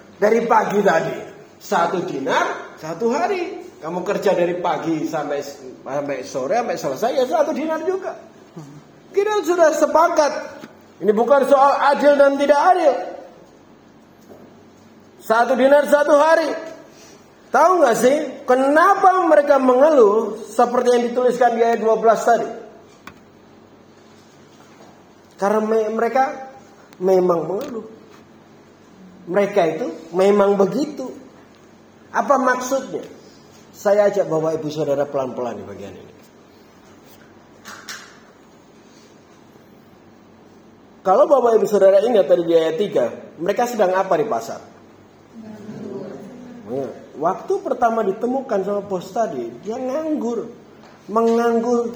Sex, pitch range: male, 195-275 Hz